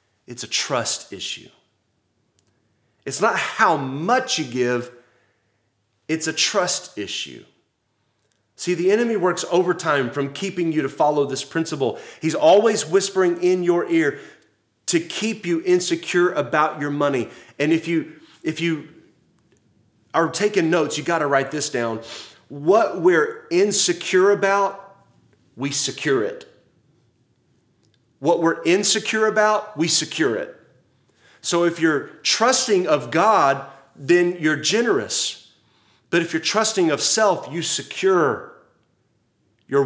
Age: 30-49